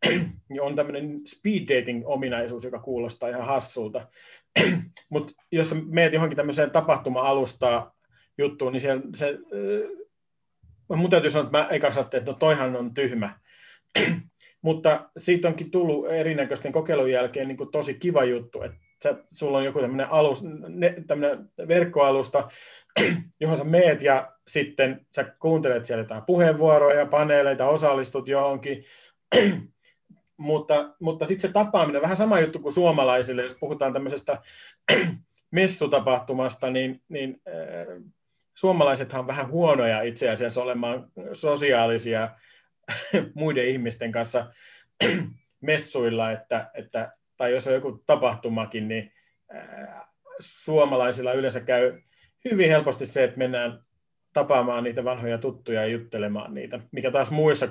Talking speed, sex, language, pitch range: 120 wpm, male, Finnish, 125-155 Hz